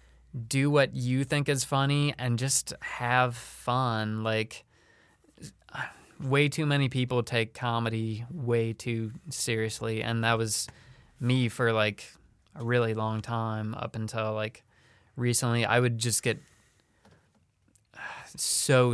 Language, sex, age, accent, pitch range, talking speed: English, male, 20-39, American, 115-145 Hz, 125 wpm